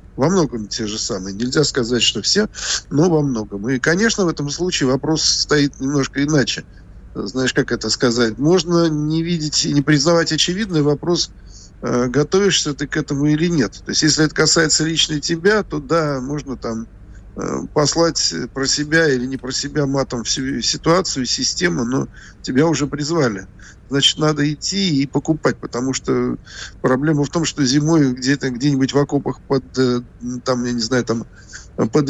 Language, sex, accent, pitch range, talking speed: Russian, male, native, 125-155 Hz, 155 wpm